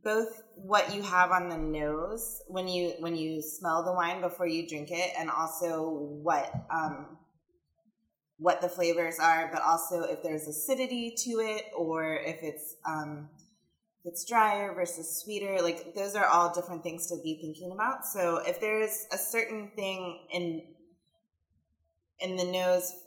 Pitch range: 155-185 Hz